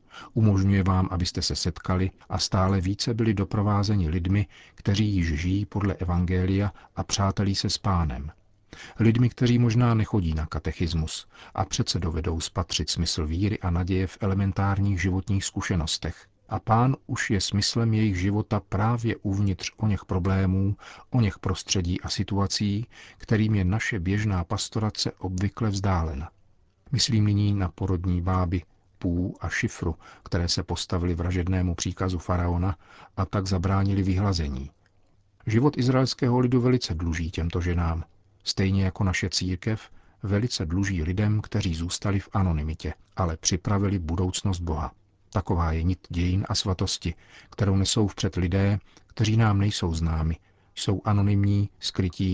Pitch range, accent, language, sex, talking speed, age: 90-105 Hz, native, Czech, male, 140 wpm, 40-59